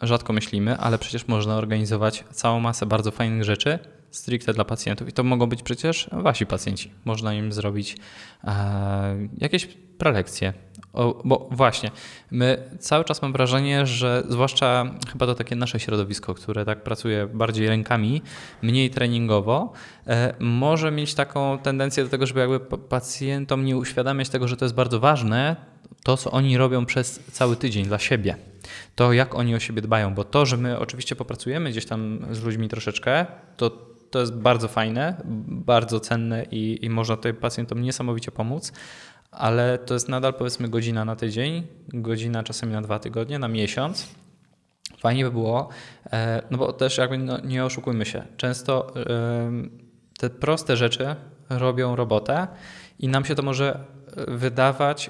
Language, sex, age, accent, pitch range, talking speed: Polish, male, 20-39, native, 110-130 Hz, 155 wpm